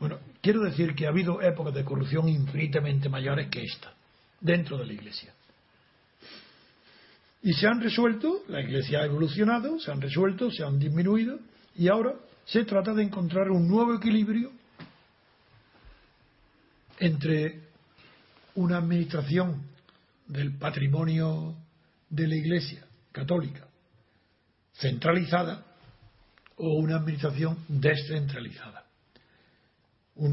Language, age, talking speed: Spanish, 60-79, 110 wpm